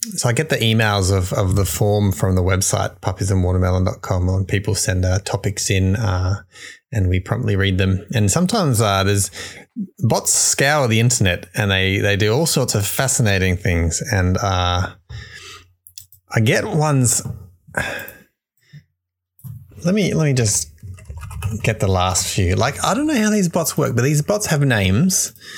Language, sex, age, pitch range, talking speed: English, male, 30-49, 95-125 Hz, 160 wpm